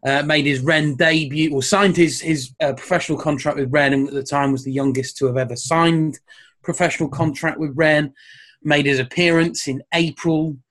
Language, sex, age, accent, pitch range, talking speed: English, male, 30-49, British, 135-165 Hz, 190 wpm